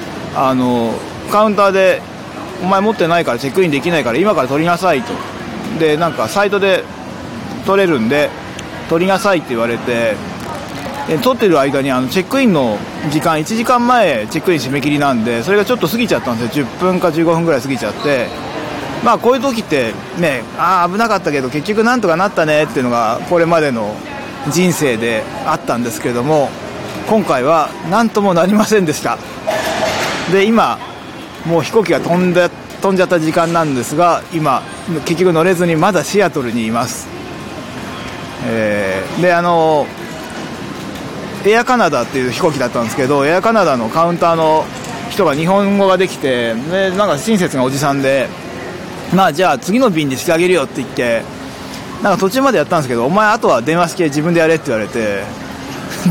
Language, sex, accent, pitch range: Japanese, male, native, 140-195 Hz